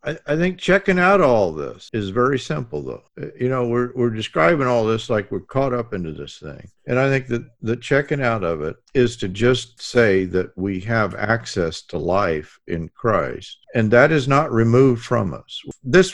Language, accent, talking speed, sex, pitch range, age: English, American, 195 wpm, male, 100-130 Hz, 50-69